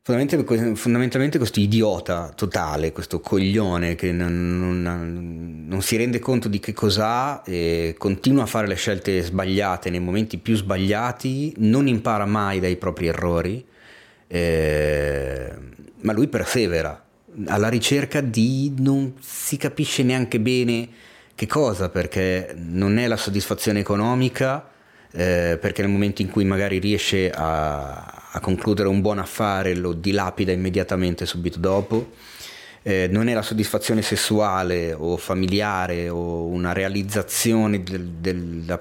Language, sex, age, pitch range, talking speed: Italian, male, 30-49, 90-110 Hz, 130 wpm